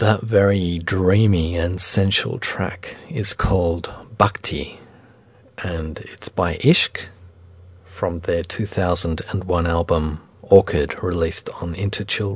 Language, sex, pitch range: English, male, 90-115 Hz